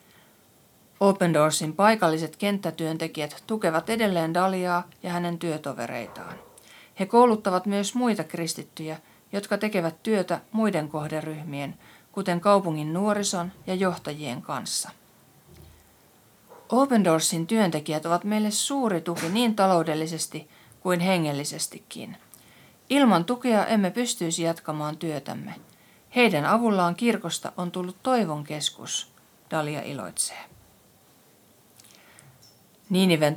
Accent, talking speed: native, 90 wpm